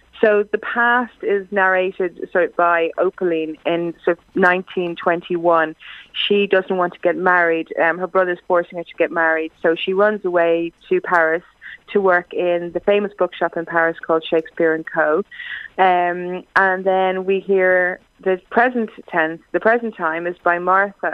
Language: English